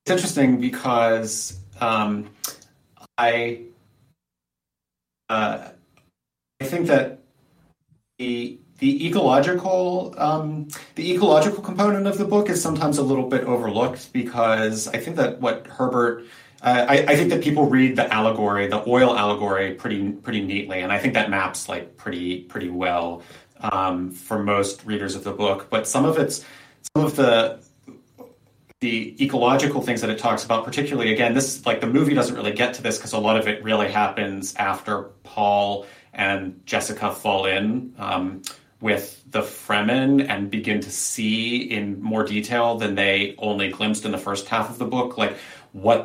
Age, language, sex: 30-49, English, male